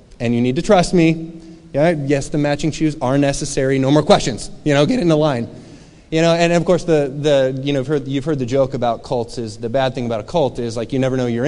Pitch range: 140-195 Hz